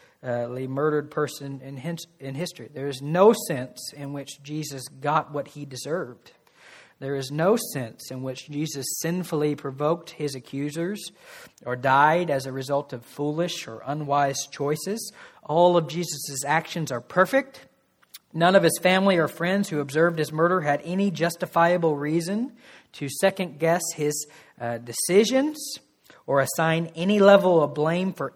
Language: English